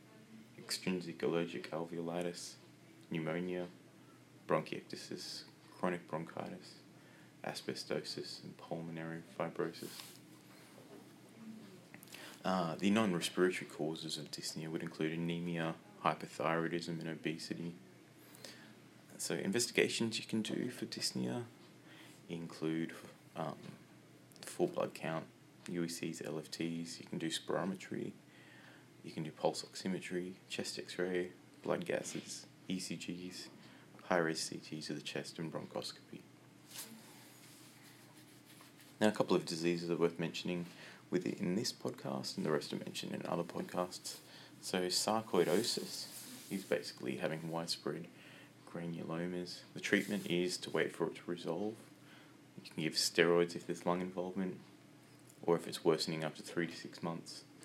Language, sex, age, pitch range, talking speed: English, male, 30-49, 80-95 Hz, 115 wpm